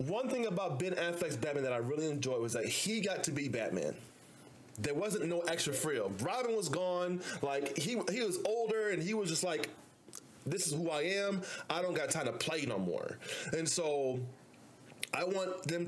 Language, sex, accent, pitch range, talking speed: English, male, American, 110-150 Hz, 200 wpm